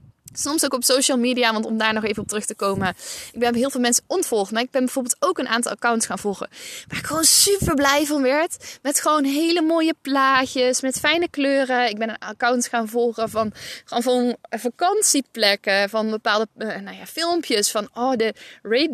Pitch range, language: 215-275 Hz, Dutch